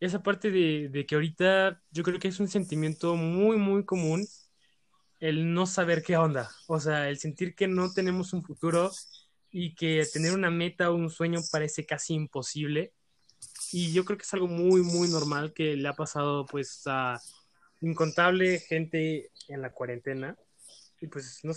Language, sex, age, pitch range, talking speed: Spanish, male, 20-39, 150-180 Hz, 175 wpm